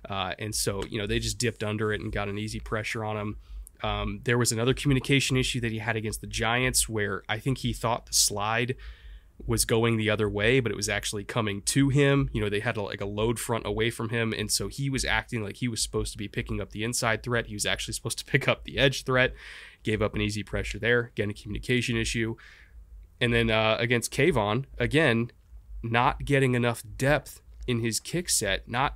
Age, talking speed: 20-39, 230 wpm